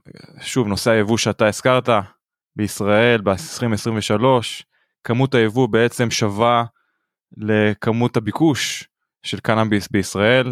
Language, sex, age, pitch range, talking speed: Hebrew, male, 20-39, 105-130 Hz, 90 wpm